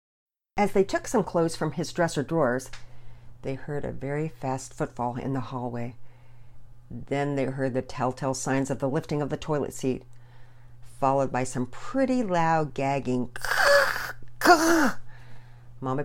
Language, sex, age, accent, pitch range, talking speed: English, female, 50-69, American, 120-160 Hz, 140 wpm